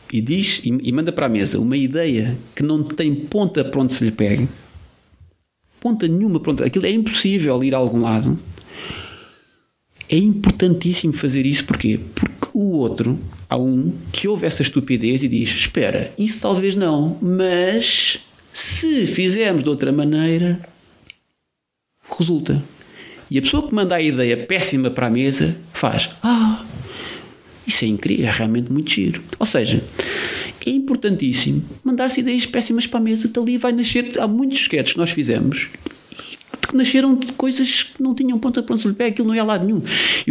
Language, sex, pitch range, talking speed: Portuguese, male, 125-205 Hz, 170 wpm